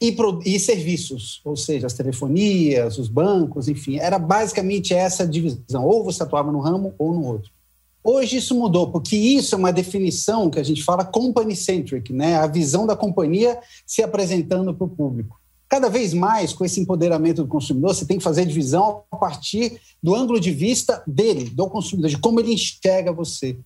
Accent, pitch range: Brazilian, 155-210 Hz